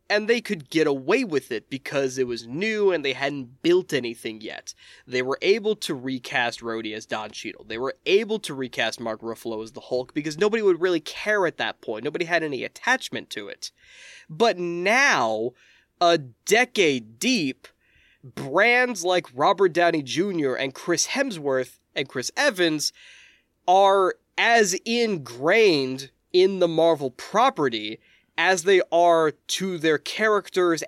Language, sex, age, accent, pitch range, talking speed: English, male, 20-39, American, 130-220 Hz, 155 wpm